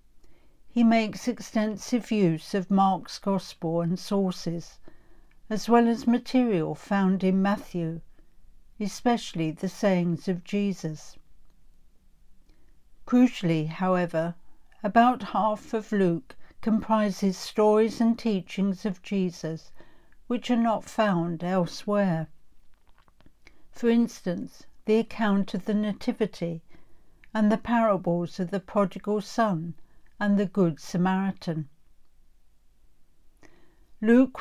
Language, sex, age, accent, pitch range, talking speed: English, female, 60-79, British, 175-220 Hz, 100 wpm